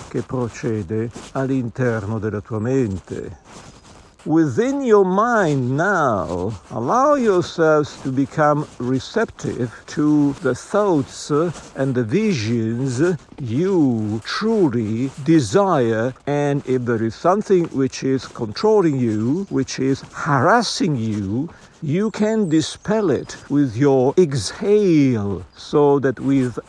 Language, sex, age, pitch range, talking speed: English, male, 50-69, 120-155 Hz, 105 wpm